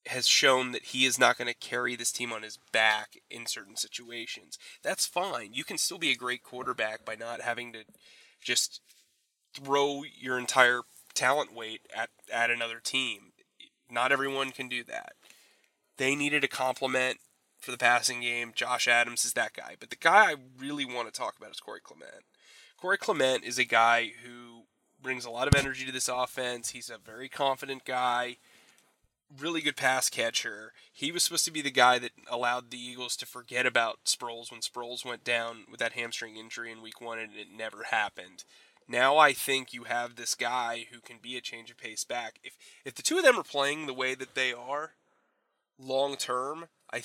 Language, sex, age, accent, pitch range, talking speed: English, male, 20-39, American, 120-135 Hz, 195 wpm